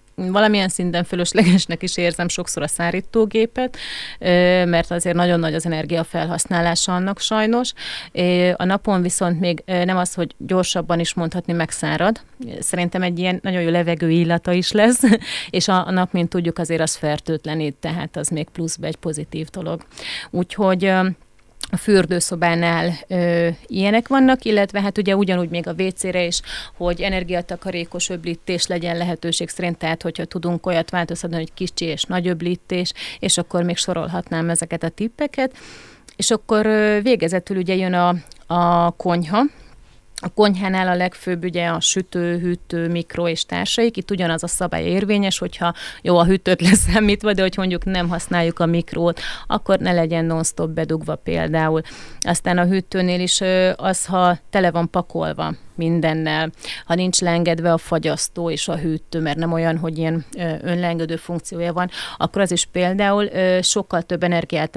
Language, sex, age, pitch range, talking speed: Hungarian, female, 30-49, 170-185 Hz, 150 wpm